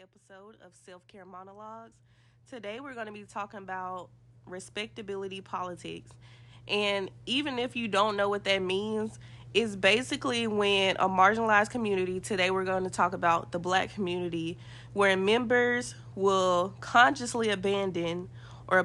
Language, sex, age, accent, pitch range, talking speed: English, female, 20-39, American, 175-205 Hz, 135 wpm